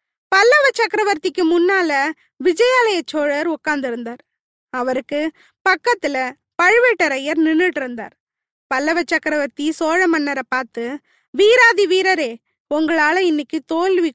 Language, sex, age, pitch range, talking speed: Tamil, female, 20-39, 290-385 Hz, 90 wpm